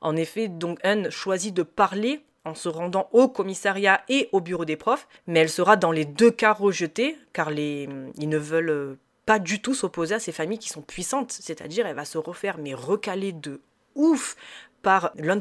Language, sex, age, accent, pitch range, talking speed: French, female, 20-39, French, 160-230 Hz, 200 wpm